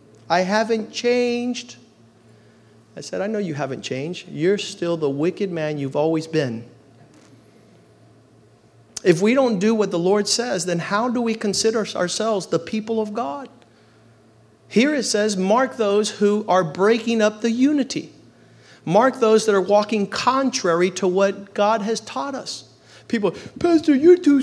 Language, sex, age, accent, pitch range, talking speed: English, male, 40-59, American, 190-255 Hz, 155 wpm